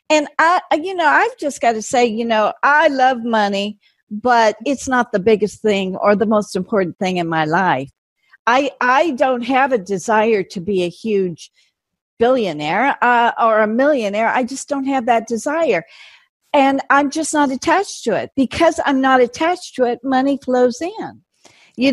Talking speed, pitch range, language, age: 180 wpm, 190-255 Hz, English, 50-69